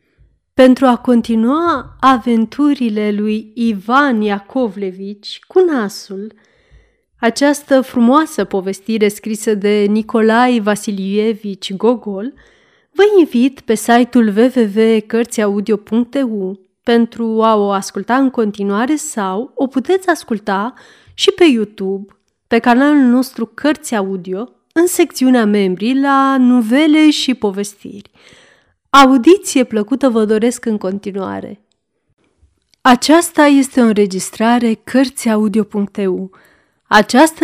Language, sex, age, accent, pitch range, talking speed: Romanian, female, 30-49, native, 205-260 Hz, 95 wpm